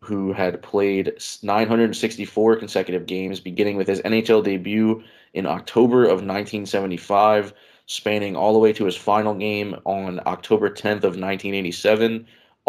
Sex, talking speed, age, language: male, 130 wpm, 20-39, English